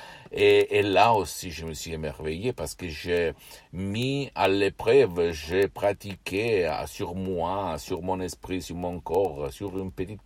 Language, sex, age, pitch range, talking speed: Italian, male, 50-69, 80-95 Hz, 160 wpm